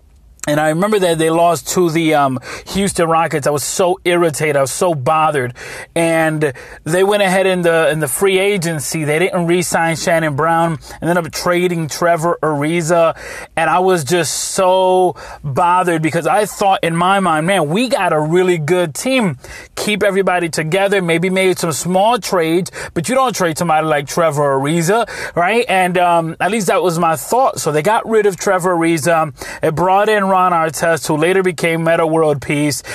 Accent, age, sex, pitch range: American, 30-49, male, 155-185 Hz